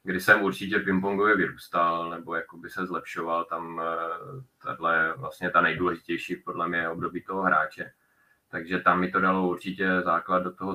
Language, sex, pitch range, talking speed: Czech, male, 90-95 Hz, 155 wpm